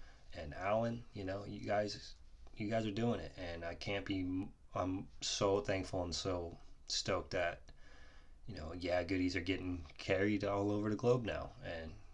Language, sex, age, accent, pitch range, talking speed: English, male, 20-39, American, 85-105 Hz, 175 wpm